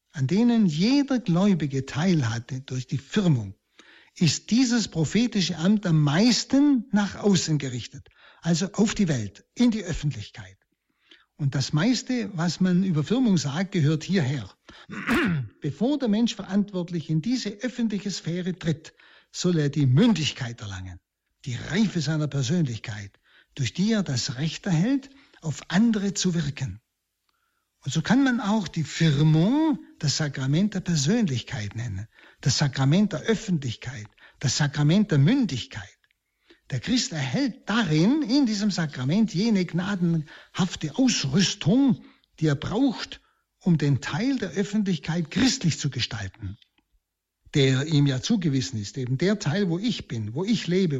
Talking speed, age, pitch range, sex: 135 wpm, 60-79, 140-205 Hz, male